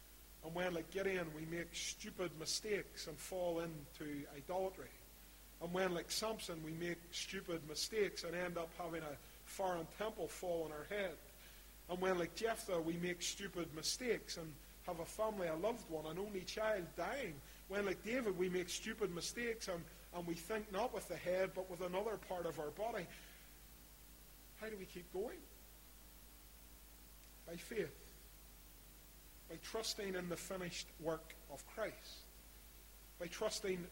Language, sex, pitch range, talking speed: English, male, 150-195 Hz, 155 wpm